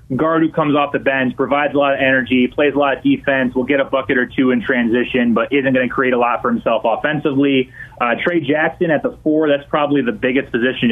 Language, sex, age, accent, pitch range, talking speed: English, male, 30-49, American, 125-155 Hz, 245 wpm